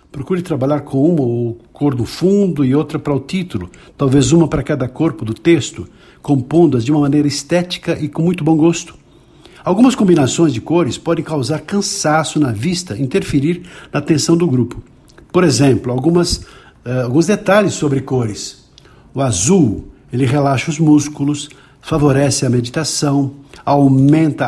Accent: Brazilian